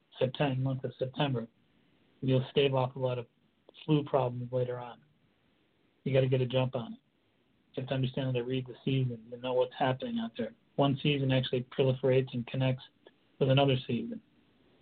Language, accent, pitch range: English, American, 125-140 Hz